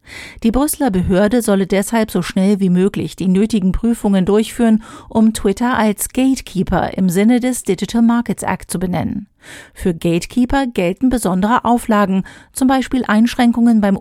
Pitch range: 195-235 Hz